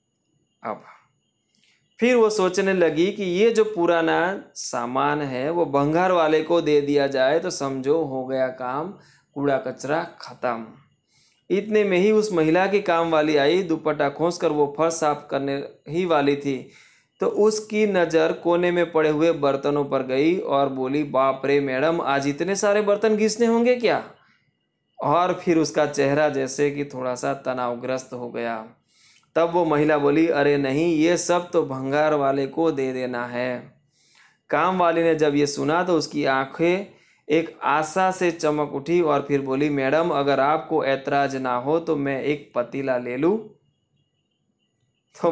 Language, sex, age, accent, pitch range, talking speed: Hindi, male, 20-39, native, 140-170 Hz, 160 wpm